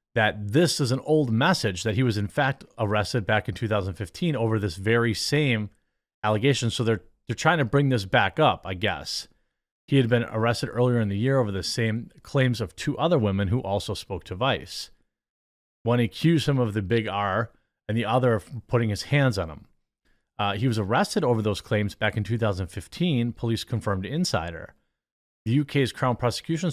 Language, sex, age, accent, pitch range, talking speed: English, male, 30-49, American, 105-130 Hz, 190 wpm